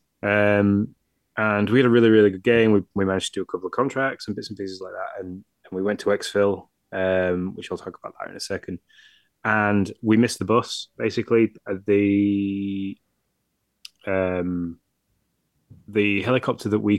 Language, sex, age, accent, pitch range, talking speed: English, male, 20-39, British, 95-110 Hz, 175 wpm